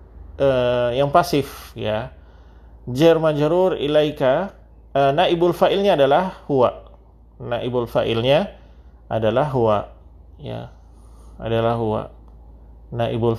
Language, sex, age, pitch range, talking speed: Indonesian, male, 30-49, 105-145 Hz, 95 wpm